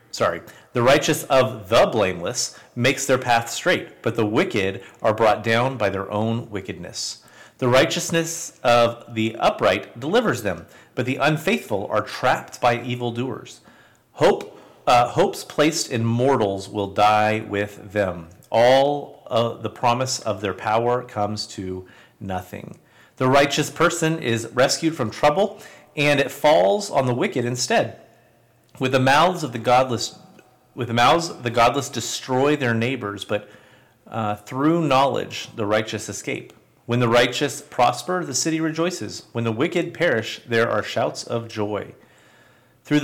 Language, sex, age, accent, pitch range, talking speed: English, male, 40-59, American, 110-135 Hz, 145 wpm